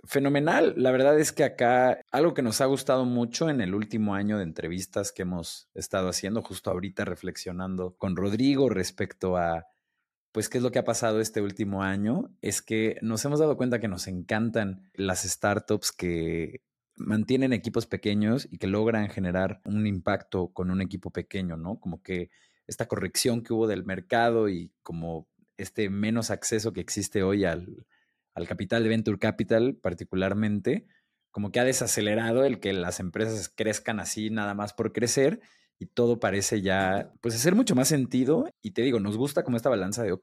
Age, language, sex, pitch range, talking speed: 30-49, Spanish, male, 95-120 Hz, 180 wpm